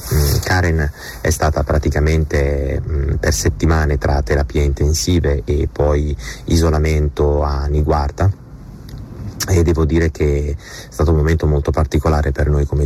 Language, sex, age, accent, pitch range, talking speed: Italian, male, 30-49, native, 75-85 Hz, 125 wpm